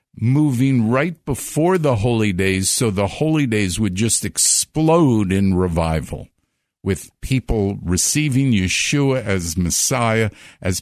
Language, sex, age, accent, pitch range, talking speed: English, male, 50-69, American, 95-135 Hz, 120 wpm